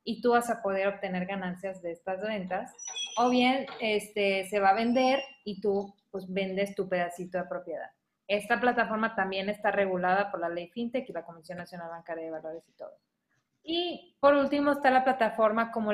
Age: 20-39